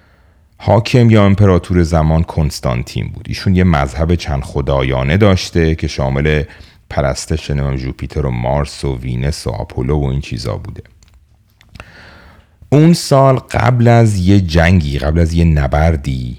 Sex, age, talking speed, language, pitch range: male, 40-59, 135 wpm, Persian, 75-100 Hz